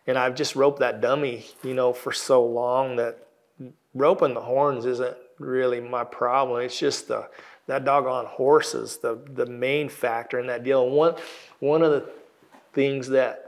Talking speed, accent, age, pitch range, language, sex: 175 wpm, American, 40-59, 130-145 Hz, English, male